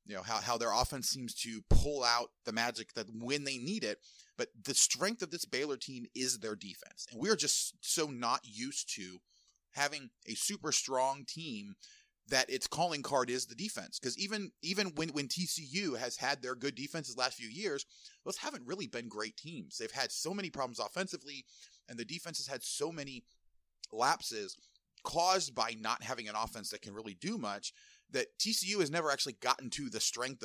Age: 30-49